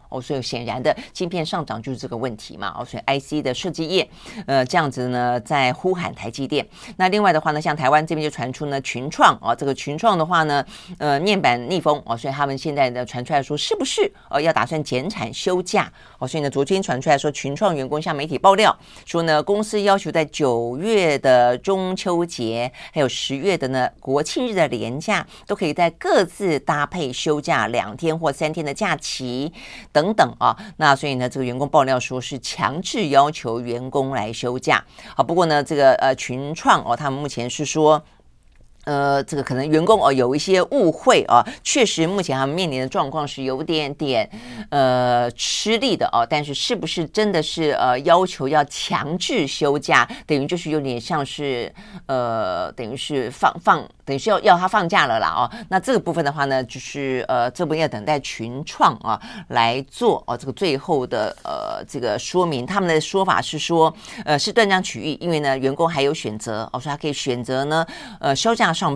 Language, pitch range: Chinese, 130-170 Hz